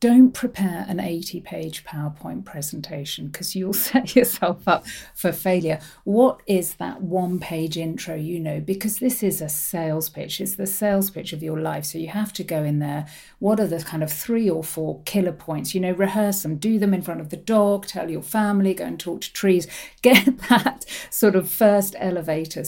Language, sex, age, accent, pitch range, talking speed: English, female, 50-69, British, 165-215 Hz, 205 wpm